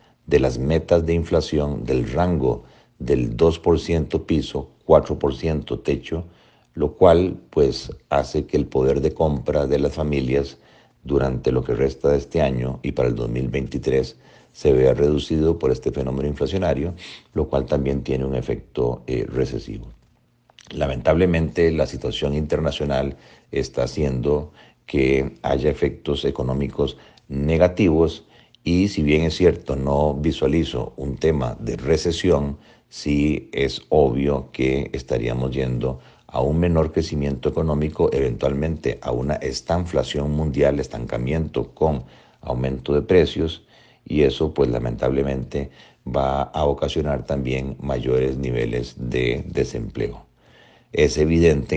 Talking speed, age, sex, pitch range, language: 125 wpm, 50-69, male, 65-80 Hz, Spanish